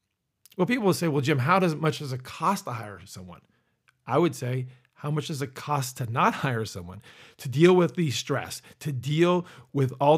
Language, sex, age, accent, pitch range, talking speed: English, male, 40-59, American, 130-170 Hz, 220 wpm